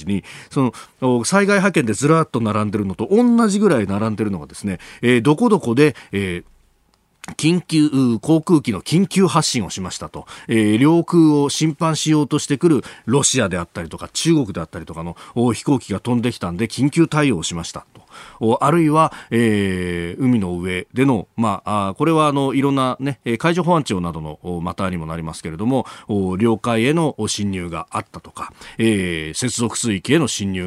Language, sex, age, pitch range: Japanese, male, 40-59, 95-150 Hz